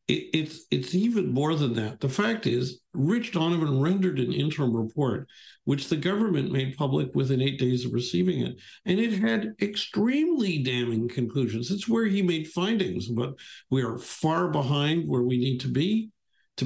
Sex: male